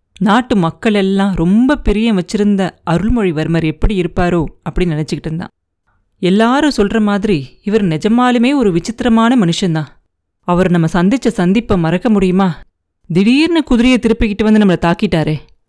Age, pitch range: 30-49, 175-240 Hz